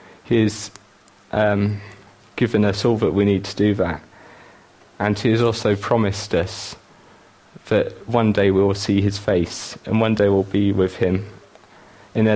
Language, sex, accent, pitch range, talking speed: English, male, British, 100-115 Hz, 165 wpm